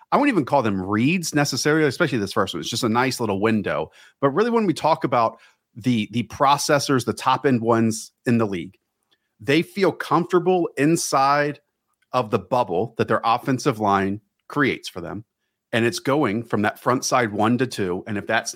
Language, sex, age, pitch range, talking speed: English, male, 40-59, 115-150 Hz, 195 wpm